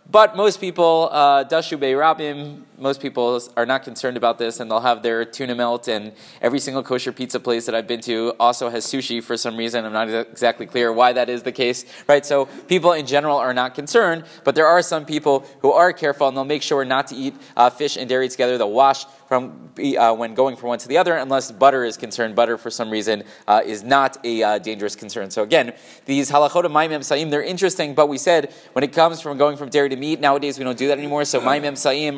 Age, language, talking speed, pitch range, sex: 20-39, English, 240 wpm, 120-145 Hz, male